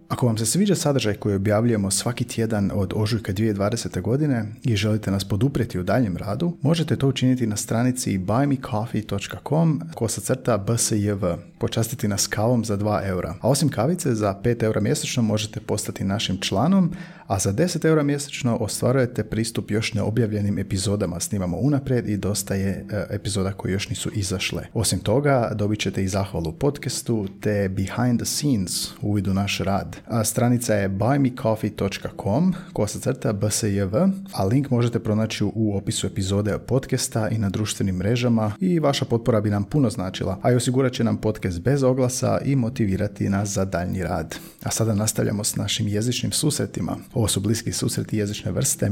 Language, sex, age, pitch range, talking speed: Croatian, male, 30-49, 100-125 Hz, 165 wpm